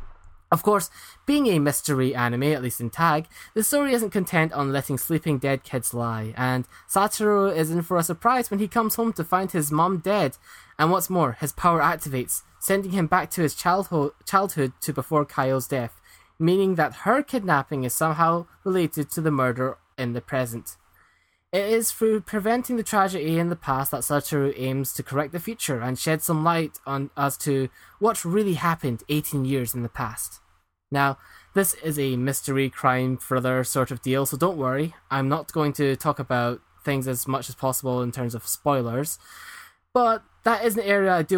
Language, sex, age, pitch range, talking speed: English, male, 10-29, 130-180 Hz, 190 wpm